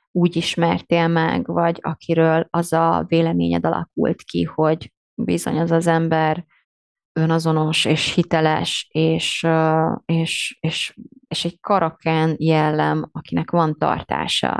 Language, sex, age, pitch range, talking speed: Hungarian, female, 30-49, 160-225 Hz, 115 wpm